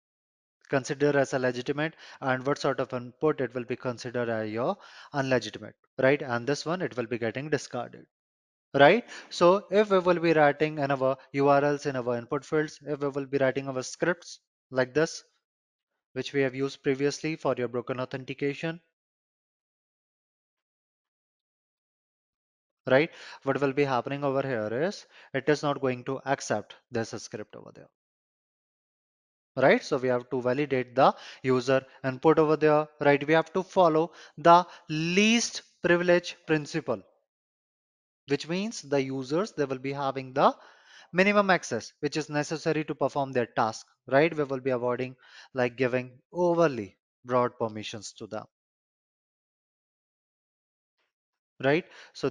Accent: Indian